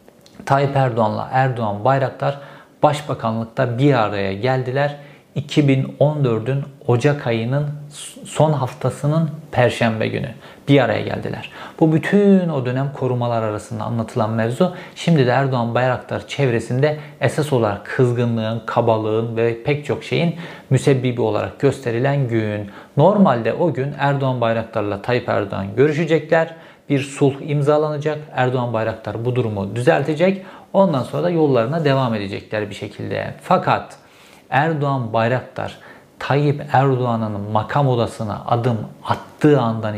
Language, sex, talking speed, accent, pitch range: Turkish, male, 115 wpm, native, 115-145 Hz